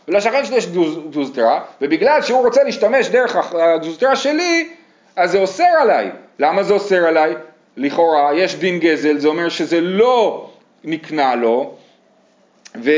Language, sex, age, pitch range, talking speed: Hebrew, male, 30-49, 155-235 Hz, 135 wpm